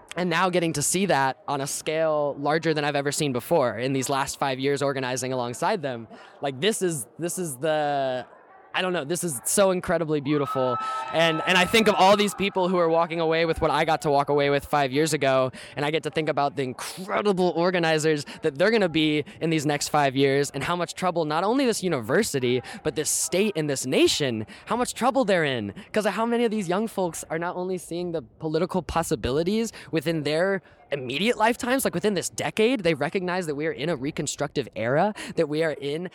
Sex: male